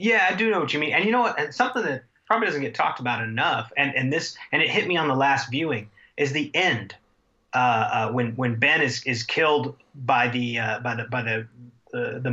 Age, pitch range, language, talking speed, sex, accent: 30-49, 125-155 Hz, English, 250 wpm, male, American